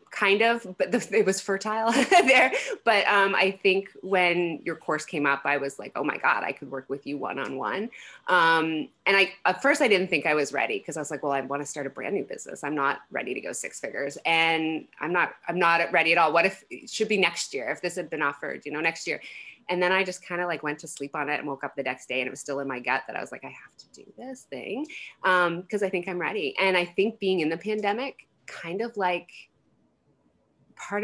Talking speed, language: 260 wpm, English